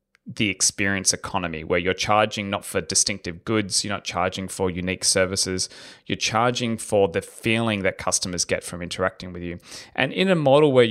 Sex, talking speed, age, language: male, 180 wpm, 20-39, English